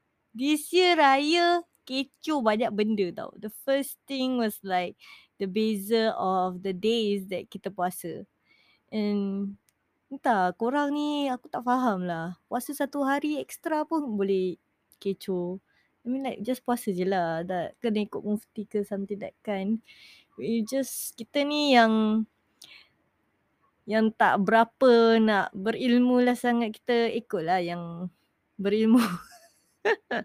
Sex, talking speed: female, 135 wpm